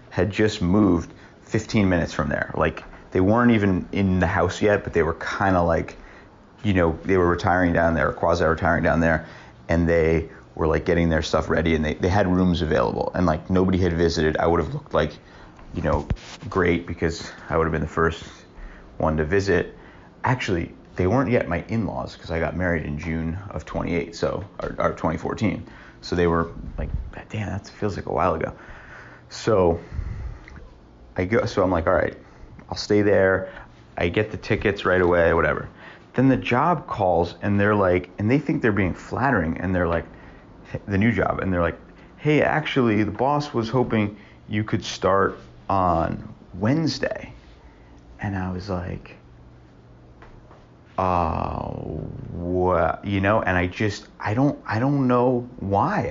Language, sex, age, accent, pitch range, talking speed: English, male, 30-49, American, 80-105 Hz, 175 wpm